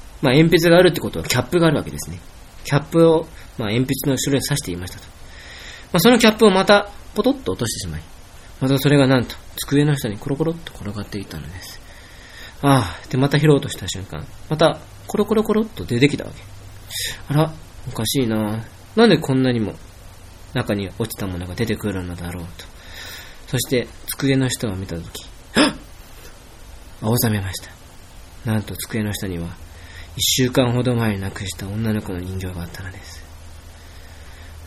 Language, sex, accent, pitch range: Japanese, male, native, 90-145 Hz